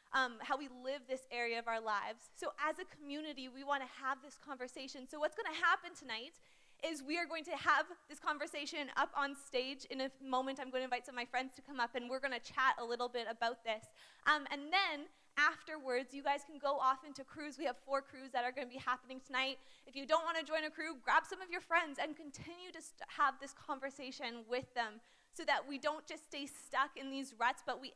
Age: 20-39